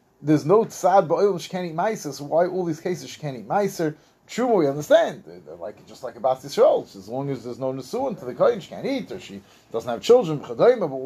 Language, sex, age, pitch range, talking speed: English, male, 30-49, 125-165 Hz, 245 wpm